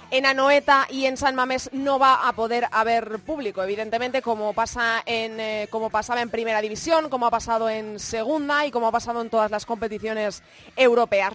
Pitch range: 230-285 Hz